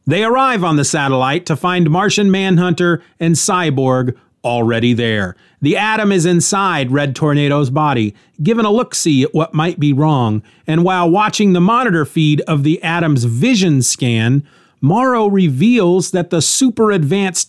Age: 40-59